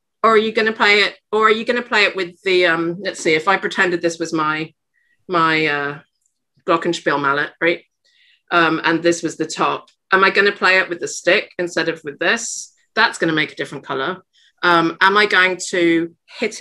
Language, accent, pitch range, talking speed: English, British, 175-245 Hz, 225 wpm